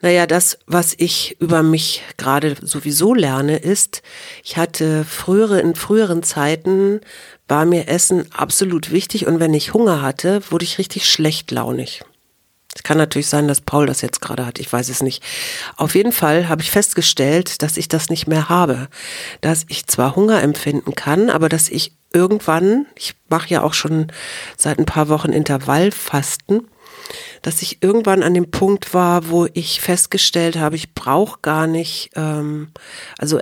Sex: female